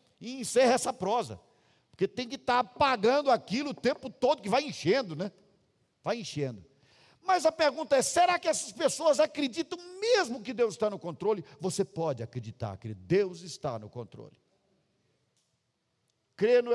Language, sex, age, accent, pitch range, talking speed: Portuguese, male, 50-69, Brazilian, 140-235 Hz, 155 wpm